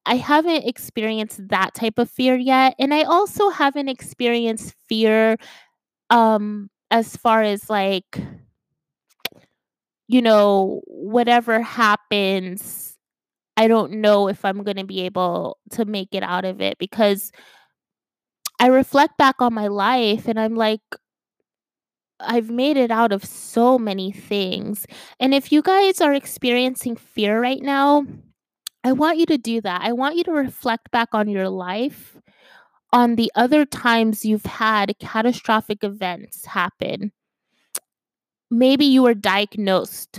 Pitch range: 205-255 Hz